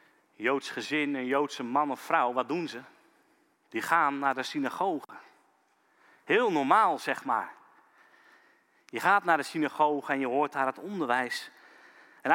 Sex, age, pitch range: male, 40-59, 165-265 Hz